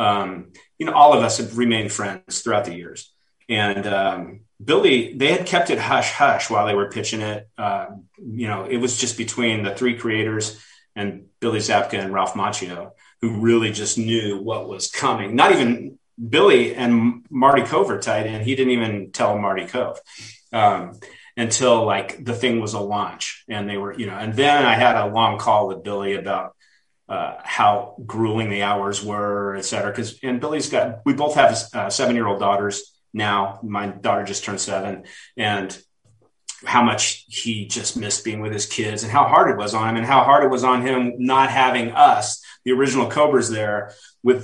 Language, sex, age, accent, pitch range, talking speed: English, male, 30-49, American, 100-120 Hz, 190 wpm